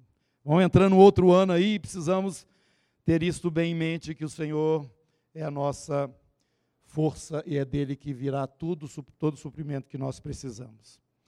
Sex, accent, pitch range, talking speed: male, Brazilian, 155-210 Hz, 165 wpm